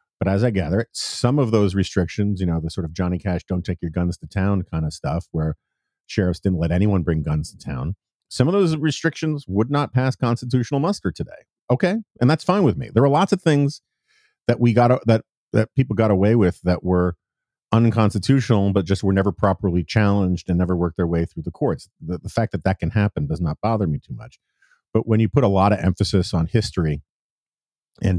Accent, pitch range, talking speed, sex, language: American, 90-115 Hz, 220 wpm, male, English